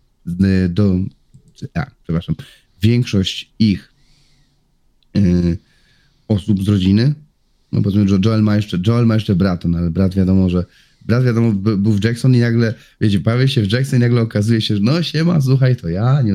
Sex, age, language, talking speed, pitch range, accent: male, 30-49, Polish, 165 wpm, 95-120 Hz, native